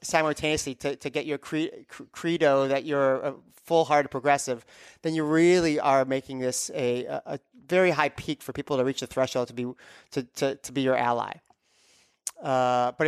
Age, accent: 30-49, American